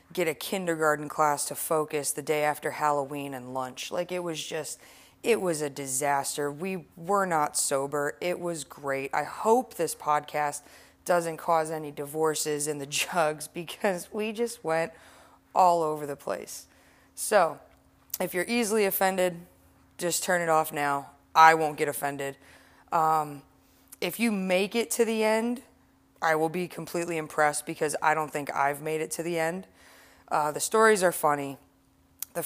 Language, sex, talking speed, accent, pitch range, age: English, female, 165 wpm, American, 145-175 Hz, 20-39